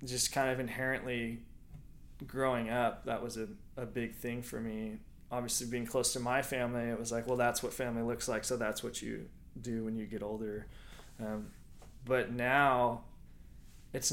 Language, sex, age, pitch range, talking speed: English, male, 20-39, 115-130 Hz, 180 wpm